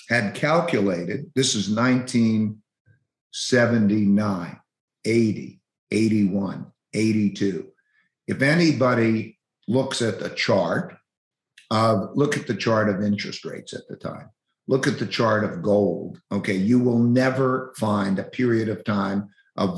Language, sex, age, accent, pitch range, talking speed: English, male, 50-69, American, 105-120 Hz, 125 wpm